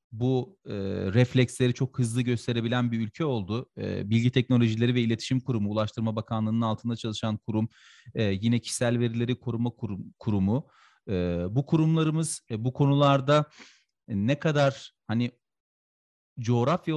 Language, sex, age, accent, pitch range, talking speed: Turkish, male, 40-59, native, 115-145 Hz, 130 wpm